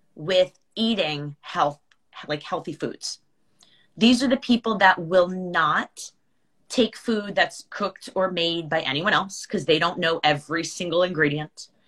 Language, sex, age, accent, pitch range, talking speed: English, female, 30-49, American, 165-225 Hz, 145 wpm